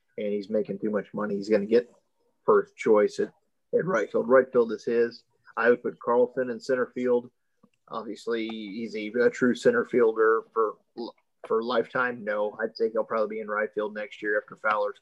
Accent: American